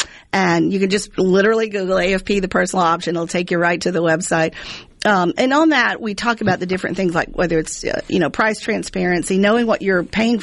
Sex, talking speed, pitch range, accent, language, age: female, 225 wpm, 175-200 Hz, American, English, 50-69